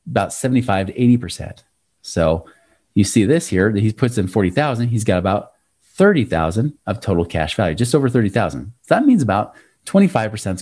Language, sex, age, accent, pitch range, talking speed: English, male, 30-49, American, 100-140 Hz, 170 wpm